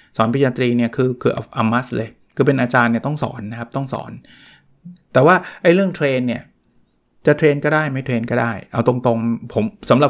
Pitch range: 120-150 Hz